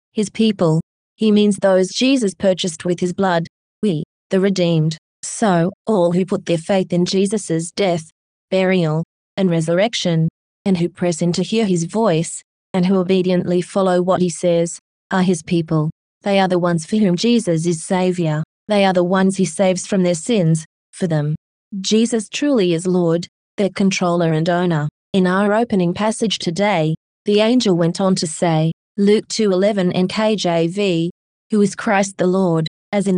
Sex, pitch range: female, 170-200 Hz